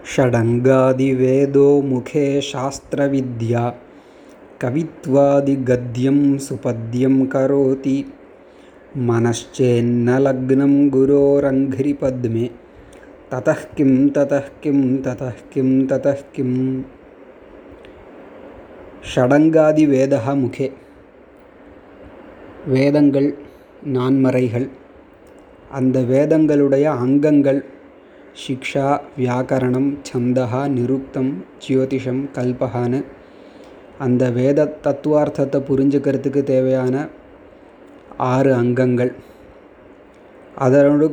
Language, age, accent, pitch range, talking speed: Tamil, 20-39, native, 130-140 Hz, 45 wpm